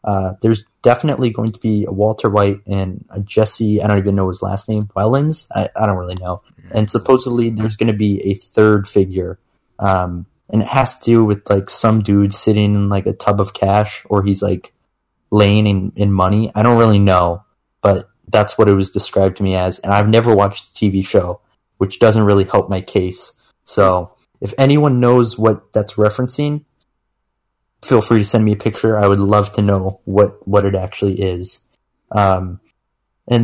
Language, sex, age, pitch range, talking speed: English, male, 20-39, 100-115 Hz, 195 wpm